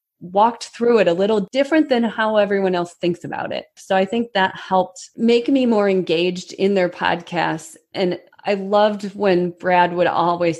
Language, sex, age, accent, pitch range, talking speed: English, female, 30-49, American, 170-205 Hz, 180 wpm